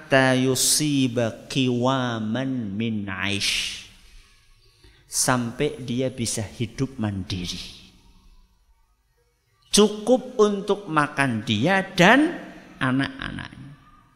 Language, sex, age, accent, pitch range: Indonesian, male, 50-69, native, 130-180 Hz